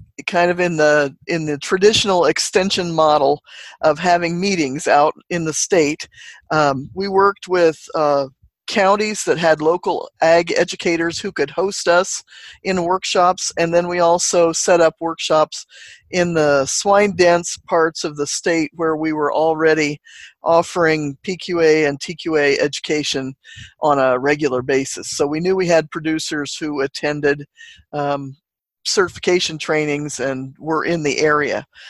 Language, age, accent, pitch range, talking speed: English, 50-69, American, 150-175 Hz, 145 wpm